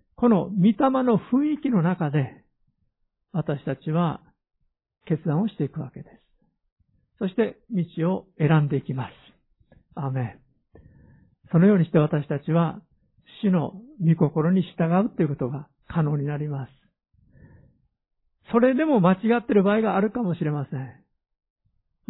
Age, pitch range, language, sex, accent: 50-69, 145-185 Hz, Japanese, male, native